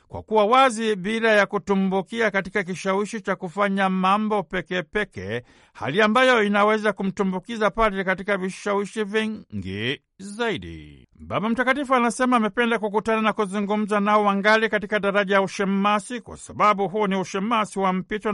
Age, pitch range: 60-79, 190-215 Hz